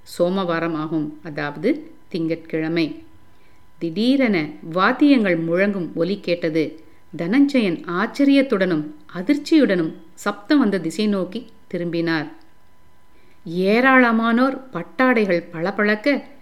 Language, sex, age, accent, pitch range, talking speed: Tamil, female, 50-69, native, 165-240 Hz, 70 wpm